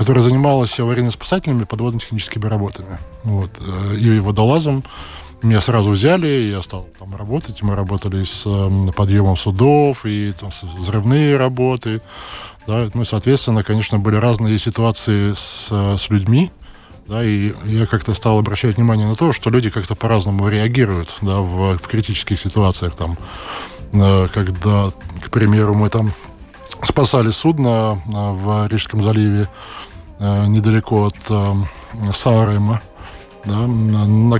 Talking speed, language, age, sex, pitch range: 125 wpm, Russian, 20-39, male, 100-120 Hz